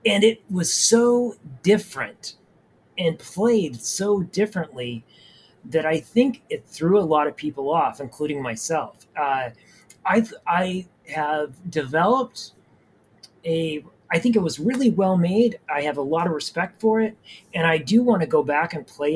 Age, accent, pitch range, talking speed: 30-49, American, 140-190 Hz, 155 wpm